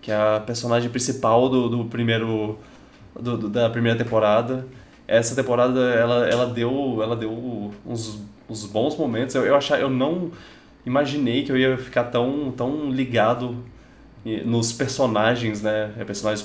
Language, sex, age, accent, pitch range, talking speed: Portuguese, male, 20-39, Brazilian, 110-140 Hz, 150 wpm